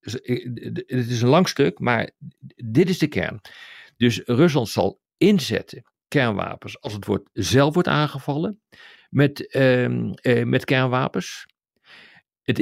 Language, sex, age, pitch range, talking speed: Dutch, male, 50-69, 110-150 Hz, 125 wpm